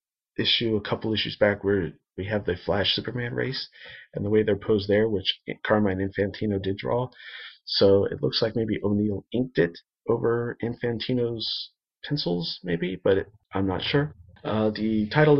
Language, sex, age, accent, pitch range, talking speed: English, male, 40-59, American, 95-120 Hz, 165 wpm